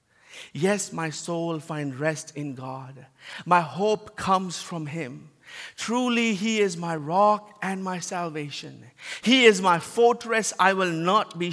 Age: 50-69